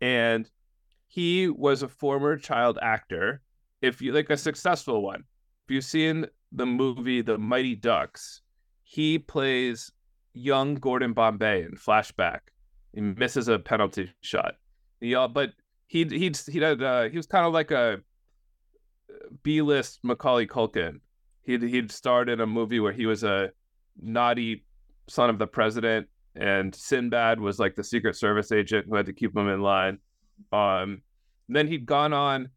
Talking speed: 160 wpm